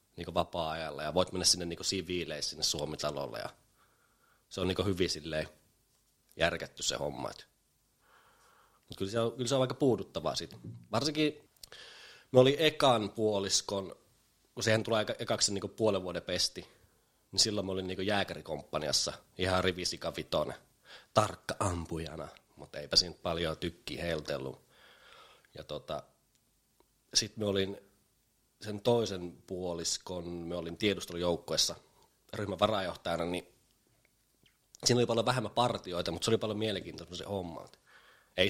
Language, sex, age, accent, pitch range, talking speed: Finnish, male, 30-49, native, 85-110 Hz, 130 wpm